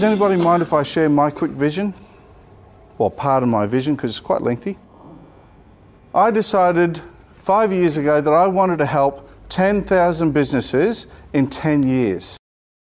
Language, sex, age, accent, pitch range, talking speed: English, male, 50-69, Australian, 130-185 Hz, 155 wpm